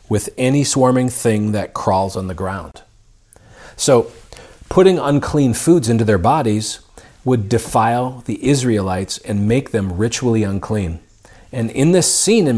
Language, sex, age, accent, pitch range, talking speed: English, male, 40-59, American, 110-140 Hz, 145 wpm